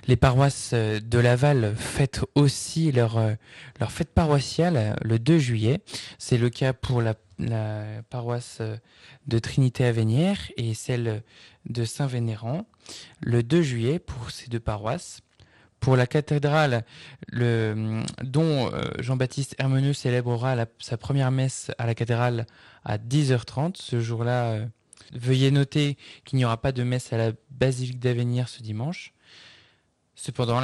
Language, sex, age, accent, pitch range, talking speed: French, male, 20-39, French, 115-135 Hz, 130 wpm